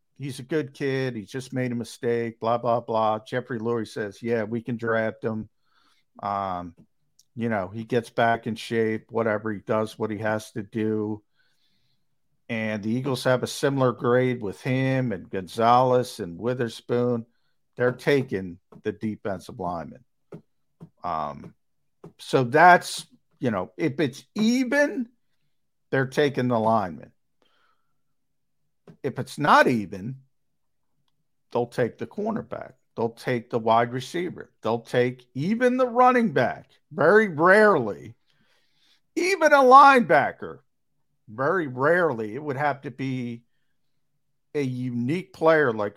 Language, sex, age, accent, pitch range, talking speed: English, male, 50-69, American, 115-145 Hz, 130 wpm